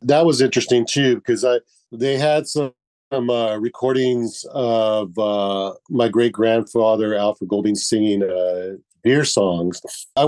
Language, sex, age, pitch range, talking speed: English, male, 40-59, 105-125 Hz, 140 wpm